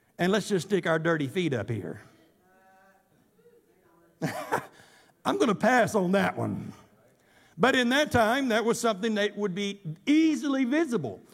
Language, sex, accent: English, male, American